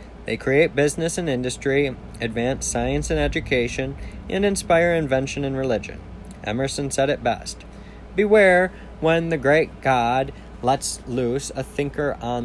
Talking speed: 135 wpm